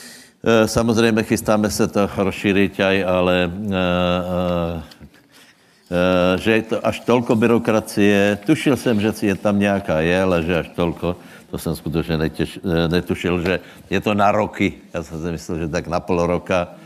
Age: 60-79